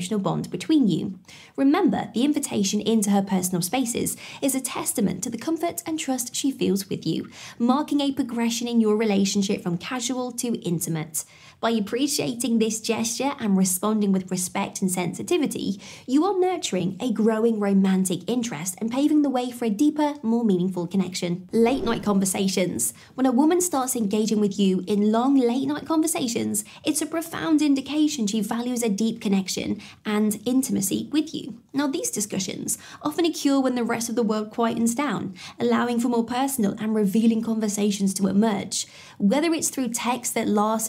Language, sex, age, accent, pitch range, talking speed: English, female, 20-39, British, 195-260 Hz, 170 wpm